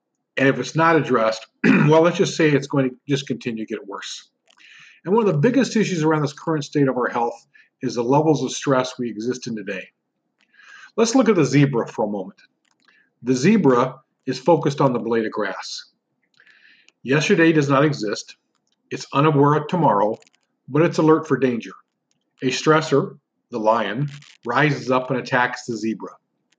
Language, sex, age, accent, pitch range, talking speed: English, male, 40-59, American, 125-160 Hz, 180 wpm